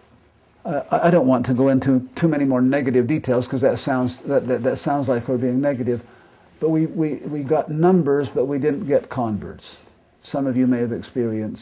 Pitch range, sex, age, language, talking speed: 115-135 Hz, male, 50-69, English, 200 wpm